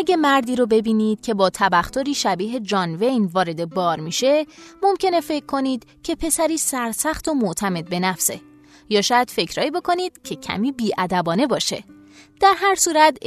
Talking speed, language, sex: 155 wpm, Persian, female